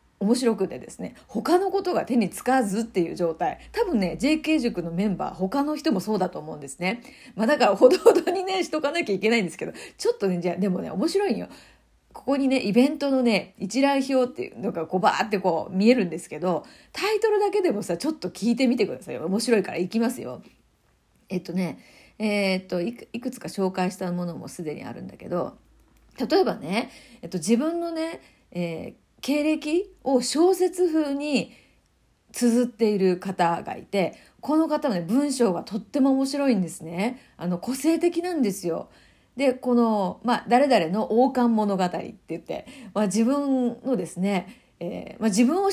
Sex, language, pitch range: female, Japanese, 195-285 Hz